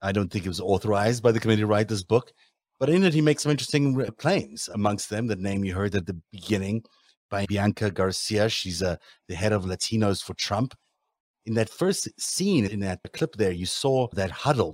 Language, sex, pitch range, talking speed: English, male, 95-115 Hz, 210 wpm